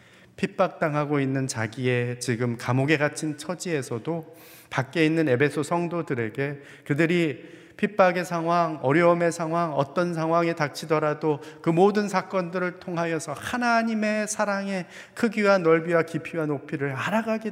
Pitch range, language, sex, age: 140-175 Hz, Korean, male, 40-59